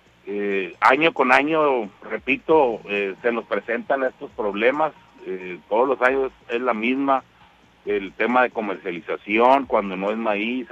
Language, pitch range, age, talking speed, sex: Spanish, 100-130 Hz, 50-69, 145 wpm, male